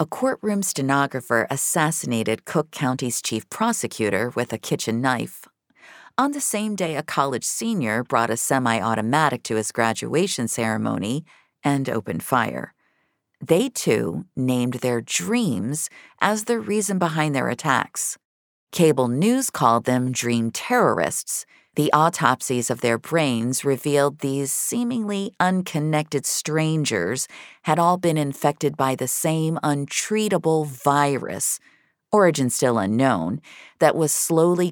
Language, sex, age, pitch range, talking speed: English, female, 50-69, 125-170 Hz, 125 wpm